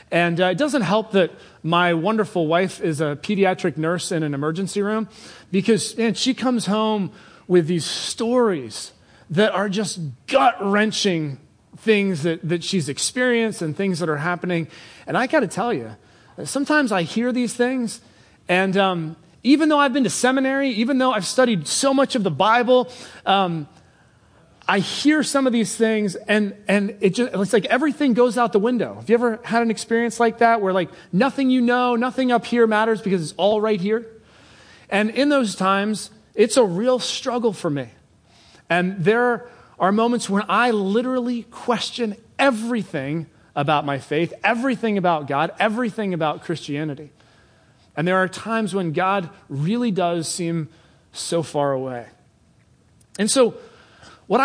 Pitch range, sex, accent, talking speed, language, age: 175-240 Hz, male, American, 165 wpm, English, 30-49